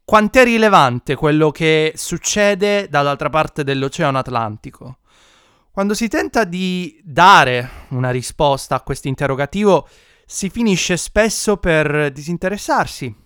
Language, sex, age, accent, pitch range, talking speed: Italian, male, 20-39, native, 135-195 Hz, 115 wpm